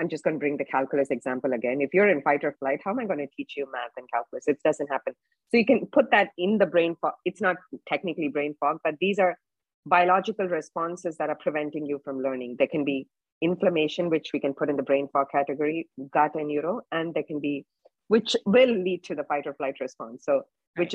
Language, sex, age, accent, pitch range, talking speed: English, female, 30-49, Indian, 150-185 Hz, 235 wpm